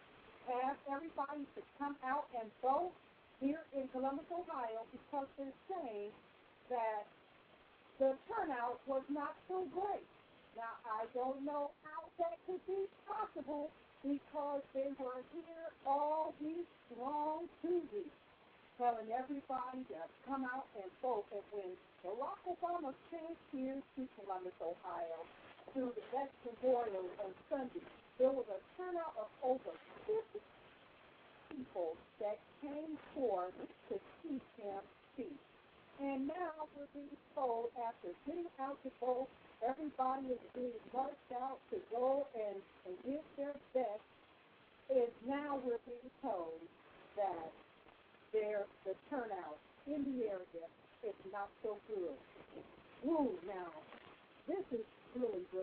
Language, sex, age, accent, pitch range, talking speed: English, female, 50-69, American, 225-295 Hz, 125 wpm